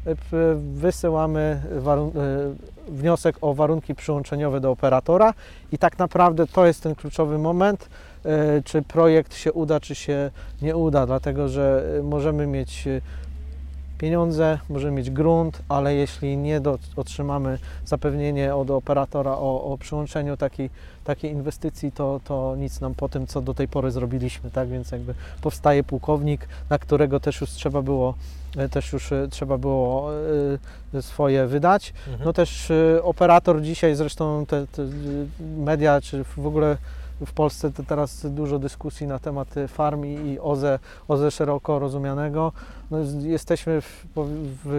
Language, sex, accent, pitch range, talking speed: Polish, male, native, 135-155 Hz, 135 wpm